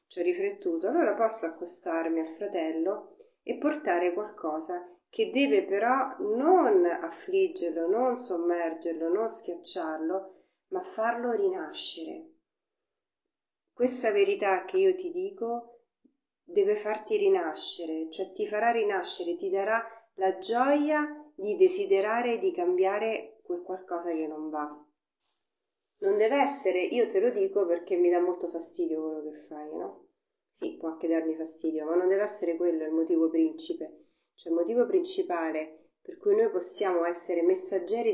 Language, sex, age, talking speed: Italian, female, 40-59, 140 wpm